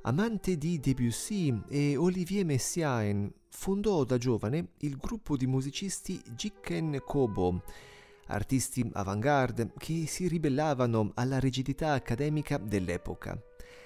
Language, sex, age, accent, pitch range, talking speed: Italian, male, 30-49, native, 110-170 Hz, 105 wpm